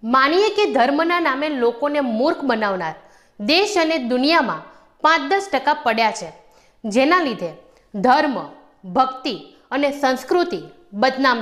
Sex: female